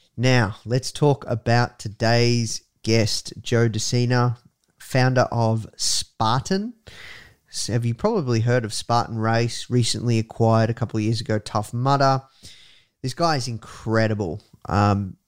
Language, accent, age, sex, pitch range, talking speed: English, Australian, 20-39, male, 110-135 Hz, 130 wpm